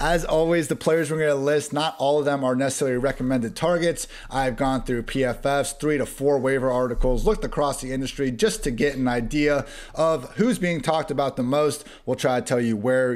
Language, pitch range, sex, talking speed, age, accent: English, 125-155 Hz, male, 215 wpm, 30-49, American